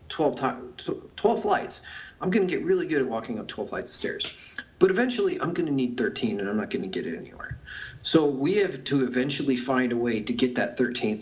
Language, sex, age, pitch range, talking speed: English, male, 30-49, 120-135 Hz, 230 wpm